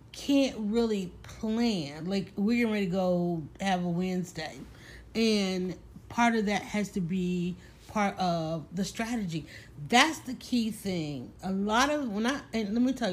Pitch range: 180-230 Hz